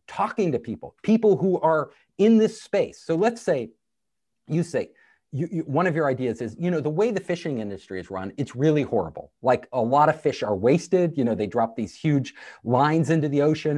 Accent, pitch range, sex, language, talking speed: American, 130-180 Hz, male, English, 210 wpm